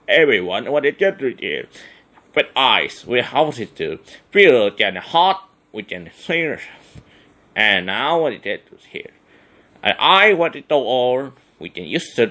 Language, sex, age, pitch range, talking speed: English, male, 30-49, 120-165 Hz, 170 wpm